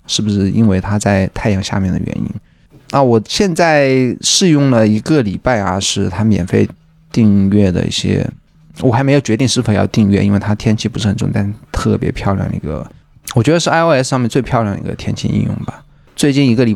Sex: male